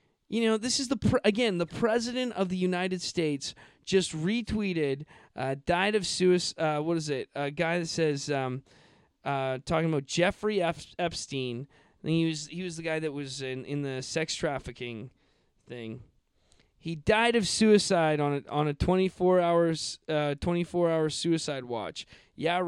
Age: 20-39